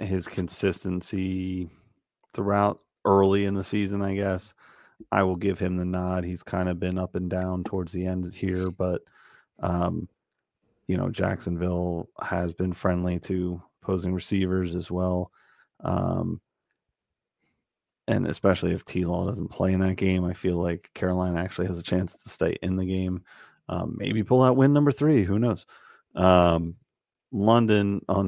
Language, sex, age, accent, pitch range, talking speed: English, male, 30-49, American, 90-100 Hz, 160 wpm